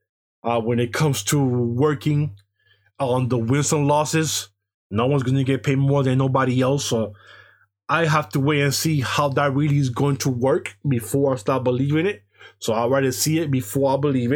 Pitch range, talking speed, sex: 115-150 Hz, 200 wpm, male